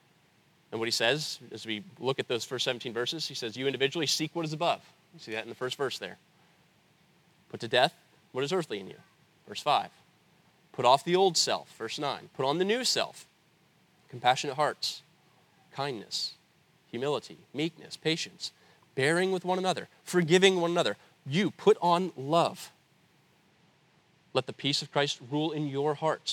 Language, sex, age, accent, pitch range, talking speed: English, male, 30-49, American, 125-165 Hz, 175 wpm